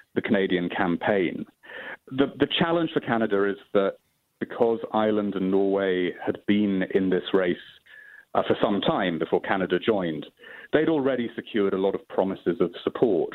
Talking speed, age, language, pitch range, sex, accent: 155 wpm, 40-59, English, 95-130 Hz, male, British